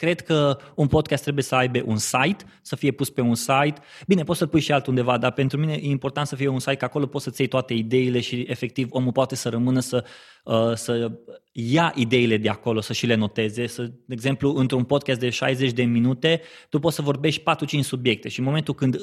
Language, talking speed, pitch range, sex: Romanian, 230 wpm, 125-155 Hz, male